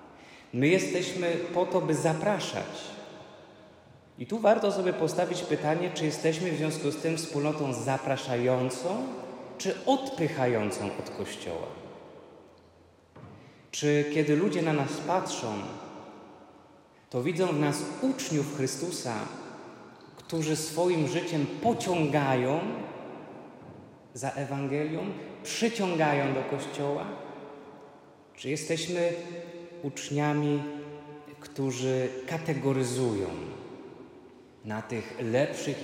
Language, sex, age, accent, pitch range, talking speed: Polish, male, 30-49, native, 130-160 Hz, 90 wpm